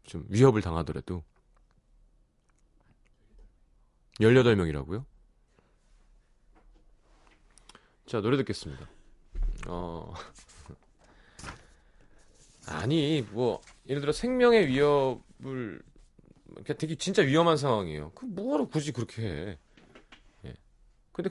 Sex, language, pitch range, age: male, Korean, 90-150 Hz, 30-49